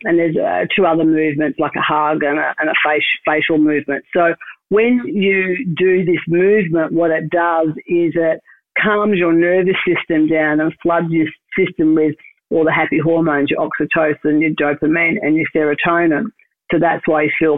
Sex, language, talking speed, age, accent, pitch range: female, English, 175 wpm, 50-69, Australian, 155-180 Hz